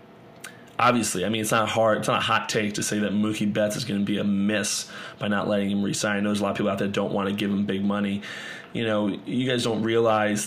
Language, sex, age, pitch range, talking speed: English, male, 20-39, 105-115 Hz, 280 wpm